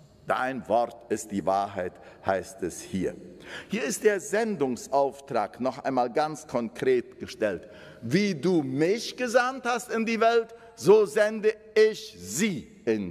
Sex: male